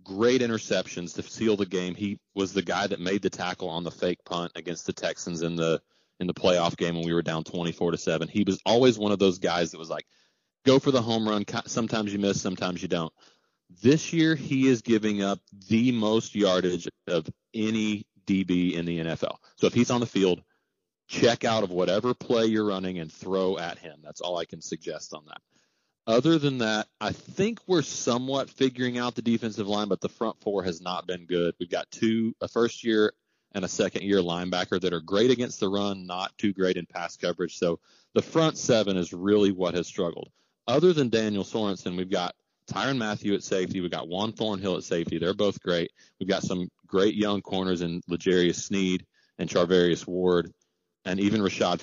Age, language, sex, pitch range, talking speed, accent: 30-49, English, male, 90-115 Hz, 205 wpm, American